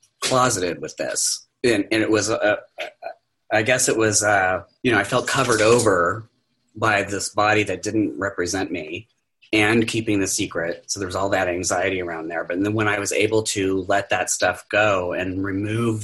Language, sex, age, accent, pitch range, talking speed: English, male, 30-49, American, 95-110 Hz, 190 wpm